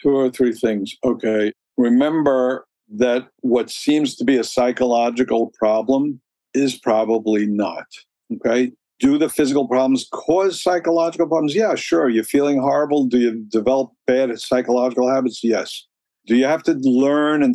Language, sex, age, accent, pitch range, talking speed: English, male, 50-69, American, 120-140 Hz, 145 wpm